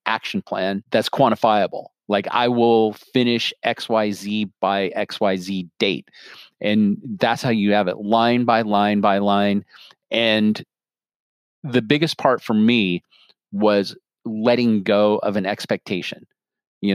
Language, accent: English, American